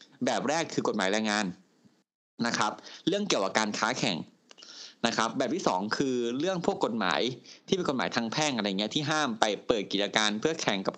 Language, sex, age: Thai, male, 20-39